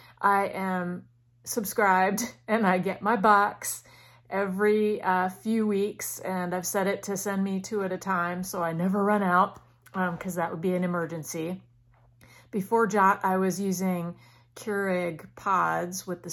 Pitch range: 160-200 Hz